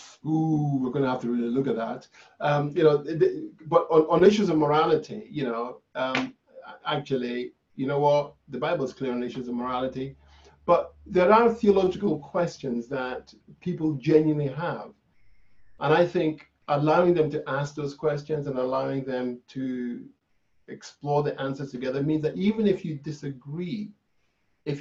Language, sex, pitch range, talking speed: English, male, 130-175 Hz, 160 wpm